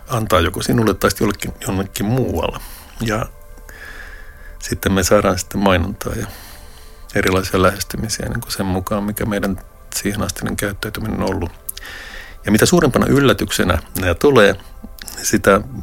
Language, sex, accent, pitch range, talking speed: Finnish, male, native, 75-105 Hz, 125 wpm